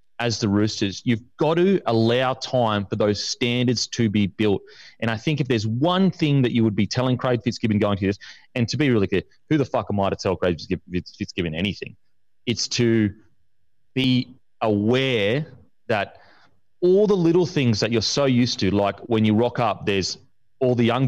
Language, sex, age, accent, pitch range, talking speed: English, male, 30-49, Australian, 105-135 Hz, 195 wpm